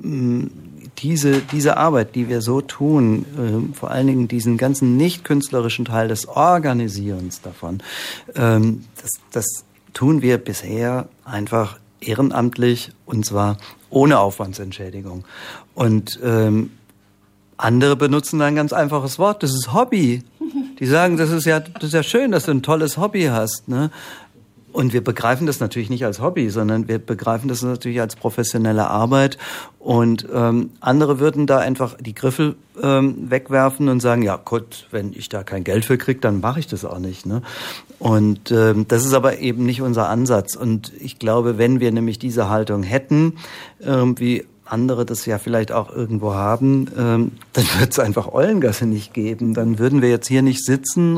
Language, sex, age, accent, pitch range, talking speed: German, male, 50-69, German, 110-135 Hz, 170 wpm